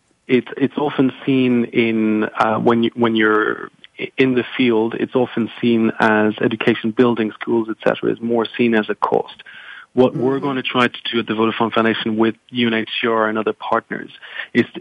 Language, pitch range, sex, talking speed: English, 110-125 Hz, male, 175 wpm